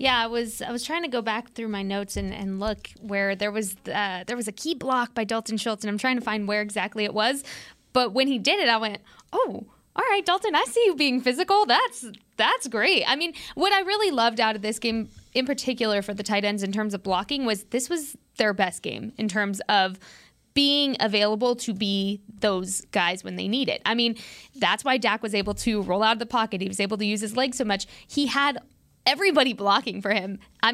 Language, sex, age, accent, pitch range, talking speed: English, female, 20-39, American, 205-260 Hz, 240 wpm